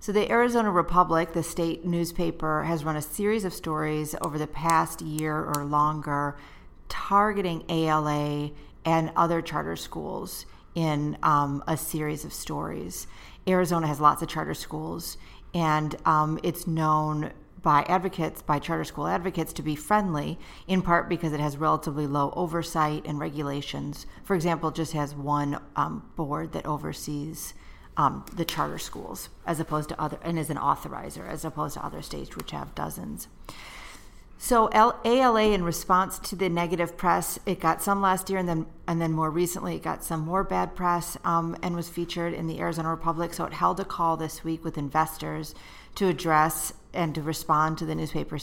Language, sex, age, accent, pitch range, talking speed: English, female, 40-59, American, 150-170 Hz, 175 wpm